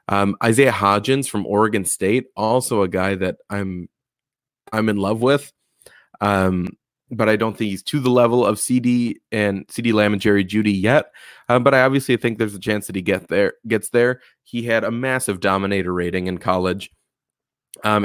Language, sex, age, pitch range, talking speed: English, male, 20-39, 95-120 Hz, 185 wpm